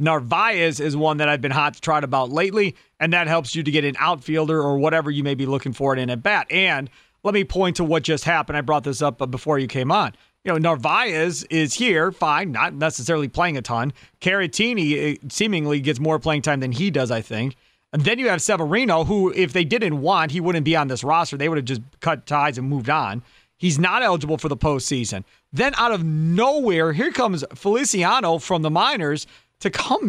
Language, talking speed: English, 220 wpm